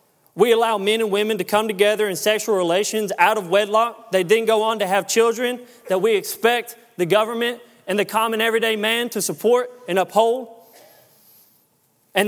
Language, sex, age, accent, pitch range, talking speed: English, male, 30-49, American, 195-235 Hz, 175 wpm